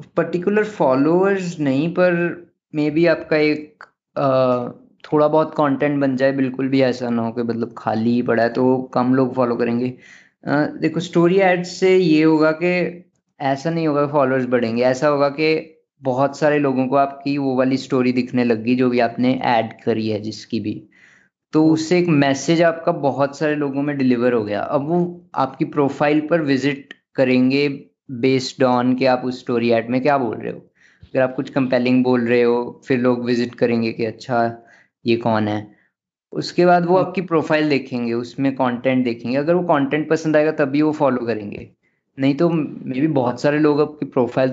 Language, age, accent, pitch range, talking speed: Hindi, 20-39, native, 125-155 Hz, 185 wpm